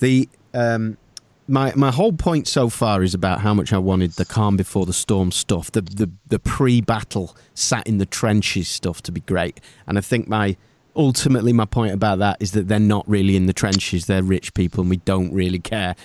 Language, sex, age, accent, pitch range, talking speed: English, male, 40-59, British, 100-130 Hz, 215 wpm